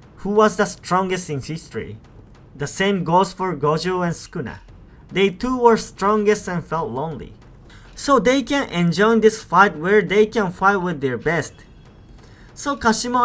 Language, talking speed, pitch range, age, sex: English, 160 wpm, 150-205 Hz, 20-39, male